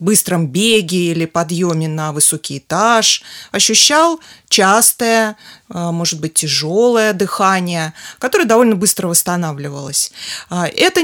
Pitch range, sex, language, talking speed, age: 165-215 Hz, female, Russian, 100 wpm, 30-49